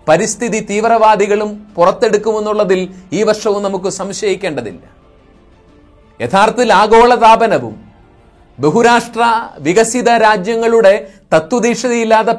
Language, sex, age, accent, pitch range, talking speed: Malayalam, male, 30-49, native, 195-230 Hz, 65 wpm